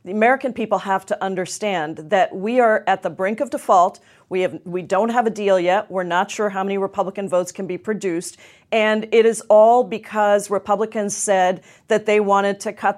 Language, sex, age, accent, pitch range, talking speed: English, female, 40-59, American, 190-245 Hz, 205 wpm